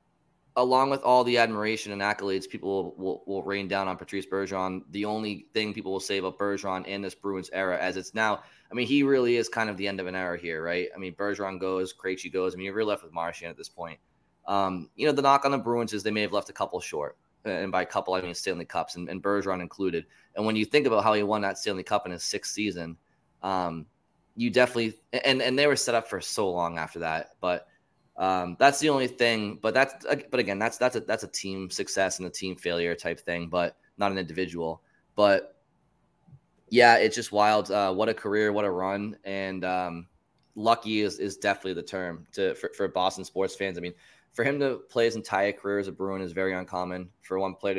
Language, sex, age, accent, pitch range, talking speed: English, male, 20-39, American, 95-115 Hz, 240 wpm